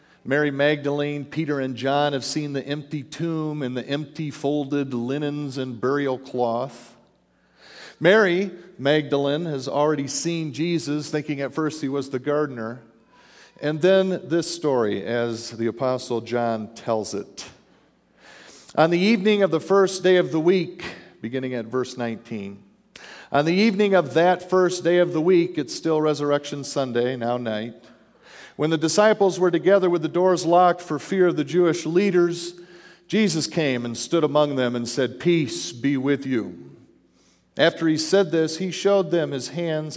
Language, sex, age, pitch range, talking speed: English, male, 50-69, 135-175 Hz, 160 wpm